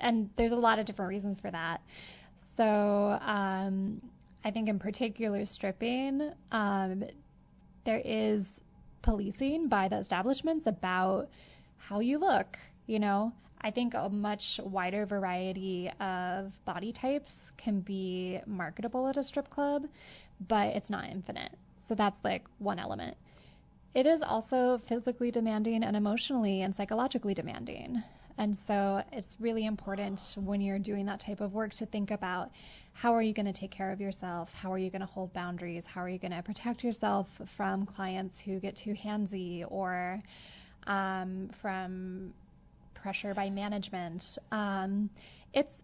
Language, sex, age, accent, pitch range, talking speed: English, female, 20-39, American, 190-225 Hz, 150 wpm